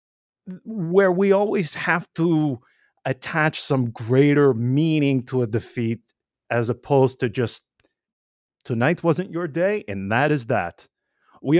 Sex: male